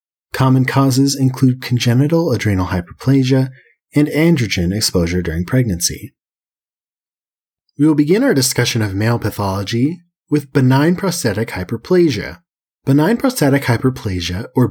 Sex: male